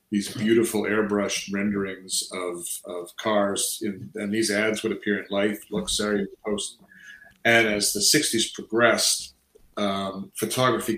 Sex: male